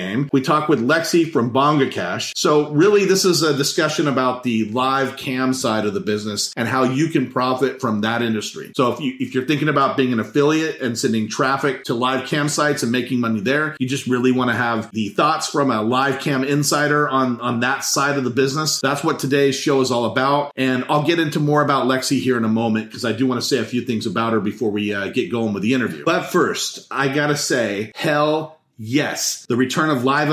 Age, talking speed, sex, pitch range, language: 40-59, 235 wpm, male, 120-145 Hz, English